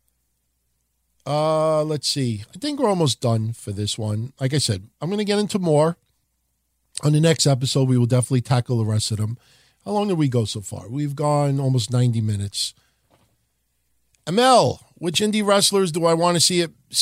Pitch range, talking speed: 120-160 Hz, 190 wpm